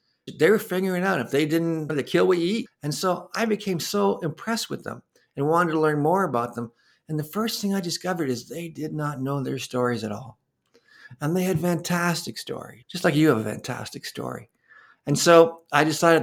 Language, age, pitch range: English, 50-69, 125-160 Hz